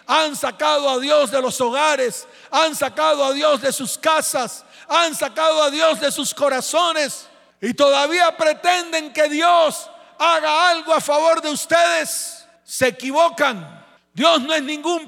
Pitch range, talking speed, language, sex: 220-310 Hz, 150 wpm, Spanish, male